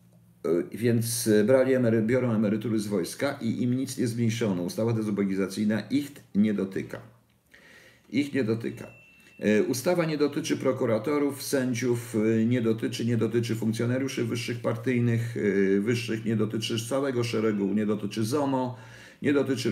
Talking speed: 125 wpm